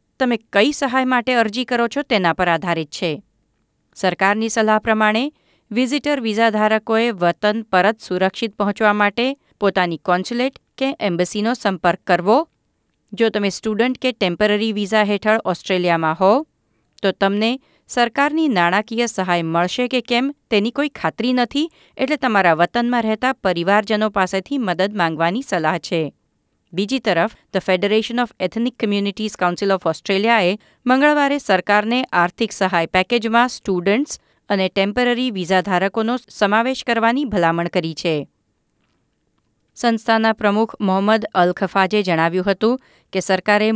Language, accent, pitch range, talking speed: Gujarati, native, 190-240 Hz, 125 wpm